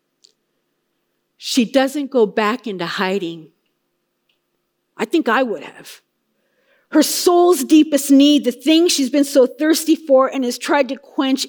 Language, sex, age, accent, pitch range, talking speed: English, female, 50-69, American, 215-285 Hz, 140 wpm